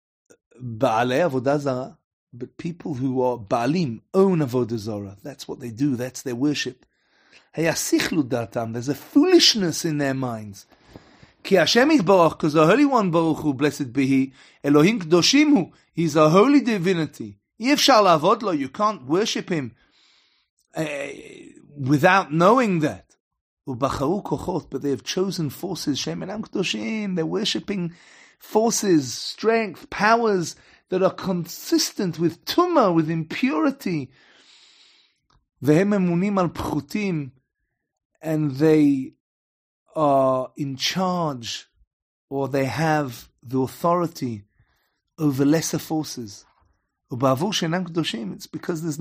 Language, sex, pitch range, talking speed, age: English, male, 135-190 Hz, 90 wpm, 30-49